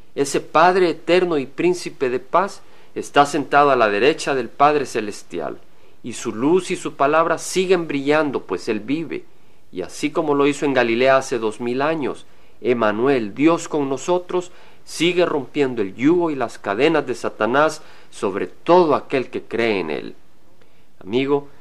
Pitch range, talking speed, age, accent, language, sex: 120-165 Hz, 160 wpm, 50-69, Mexican, Spanish, male